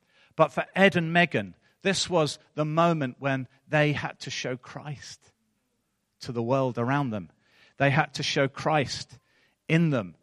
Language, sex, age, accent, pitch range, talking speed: English, male, 40-59, British, 120-155 Hz, 160 wpm